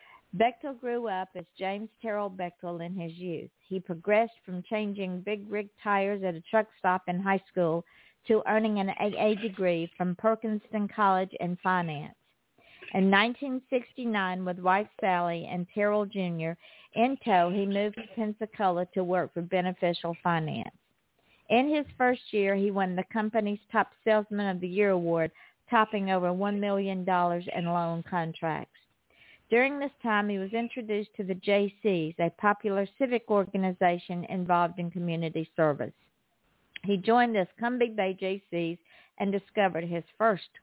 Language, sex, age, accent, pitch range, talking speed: English, female, 50-69, American, 175-215 Hz, 150 wpm